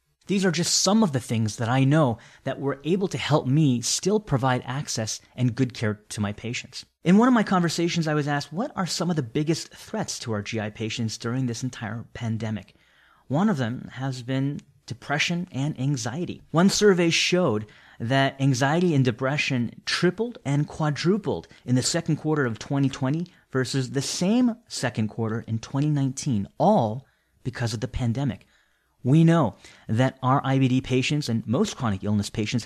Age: 30-49